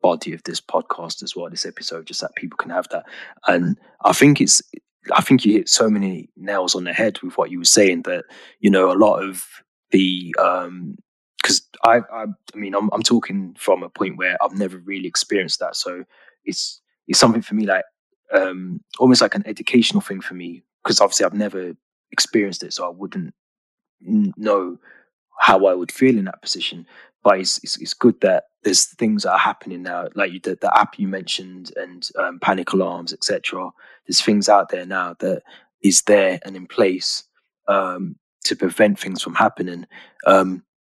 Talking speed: 190 wpm